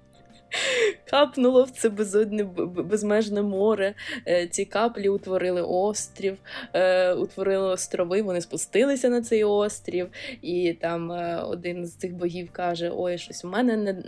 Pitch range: 180-215 Hz